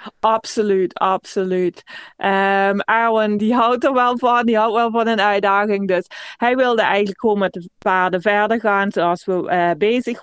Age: 20-39